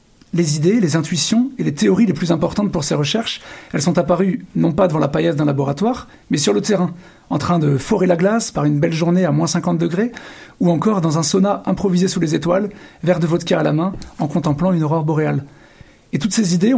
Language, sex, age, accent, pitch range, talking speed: French, male, 40-59, French, 155-195 Hz, 235 wpm